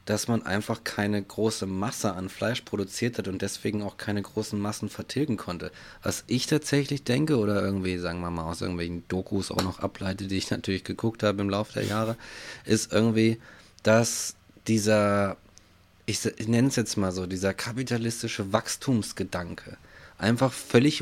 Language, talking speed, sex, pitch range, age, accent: German, 165 wpm, male, 100-120 Hz, 30-49, German